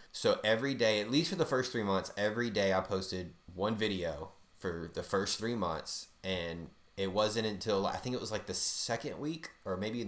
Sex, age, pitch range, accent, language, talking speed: male, 30-49, 95-110 Hz, American, English, 215 wpm